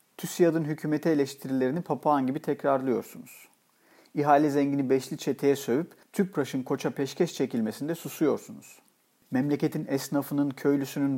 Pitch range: 125-150 Hz